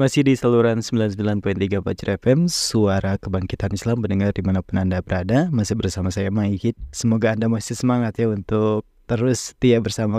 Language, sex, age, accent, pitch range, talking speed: Indonesian, male, 20-39, native, 105-130 Hz, 155 wpm